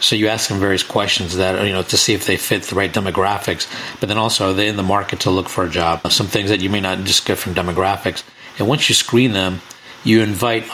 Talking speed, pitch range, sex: 270 wpm, 100-120 Hz, male